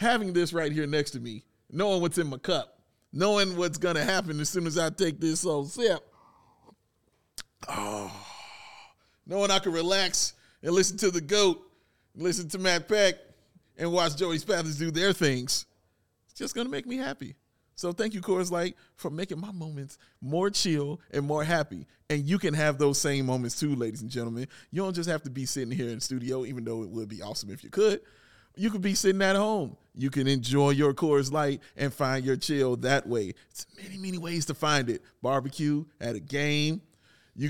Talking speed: 205 wpm